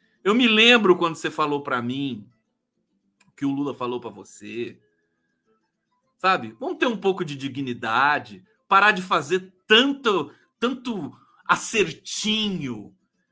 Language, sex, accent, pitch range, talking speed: Portuguese, male, Brazilian, 170-235 Hz, 125 wpm